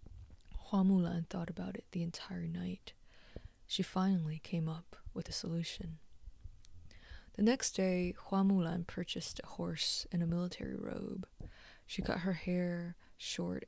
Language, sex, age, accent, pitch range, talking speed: English, female, 20-39, American, 165-185 Hz, 140 wpm